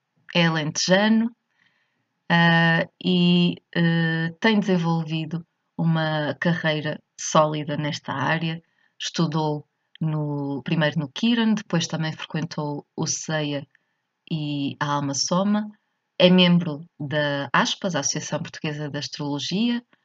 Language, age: Portuguese, 20-39